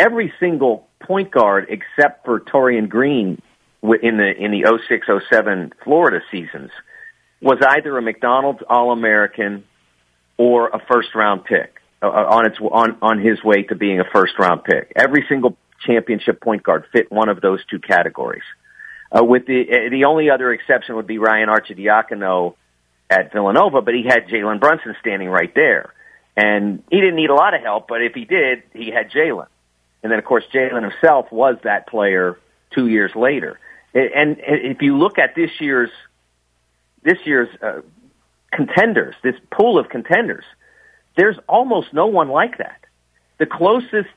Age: 50-69